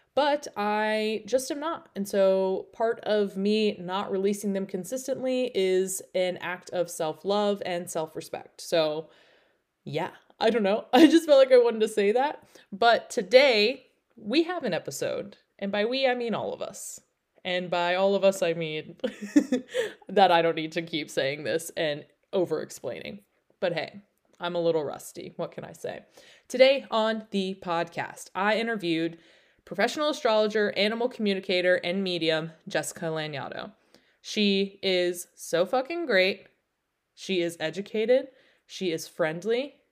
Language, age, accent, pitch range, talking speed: English, 20-39, American, 180-255 Hz, 155 wpm